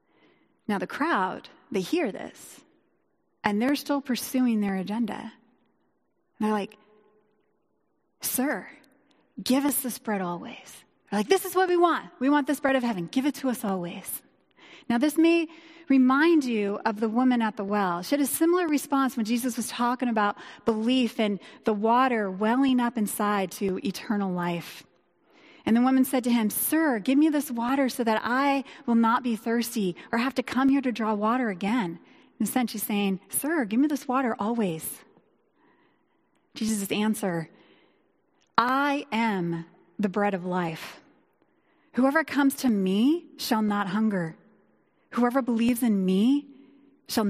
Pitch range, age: 210-285 Hz, 30-49